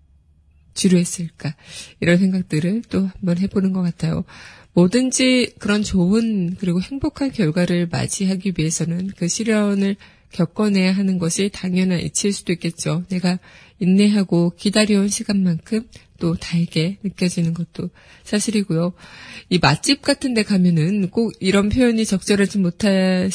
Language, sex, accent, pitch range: Korean, female, native, 170-205 Hz